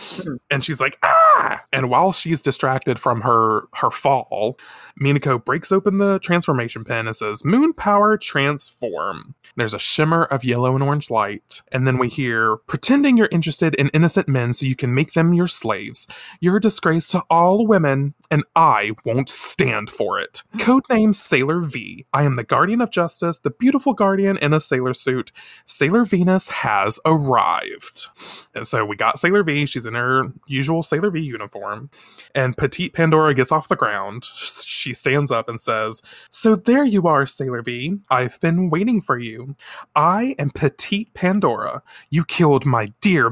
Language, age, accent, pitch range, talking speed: English, 20-39, American, 130-200 Hz, 170 wpm